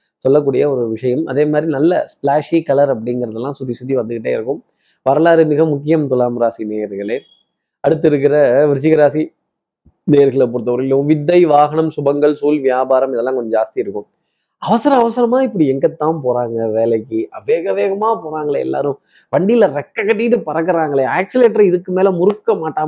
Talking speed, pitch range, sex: 130 wpm, 125-165 Hz, male